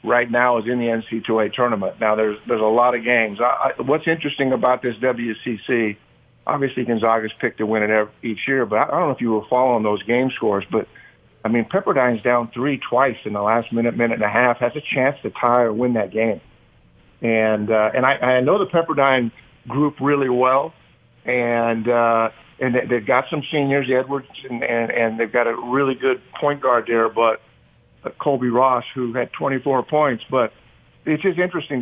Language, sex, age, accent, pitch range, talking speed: English, male, 50-69, American, 115-140 Hz, 205 wpm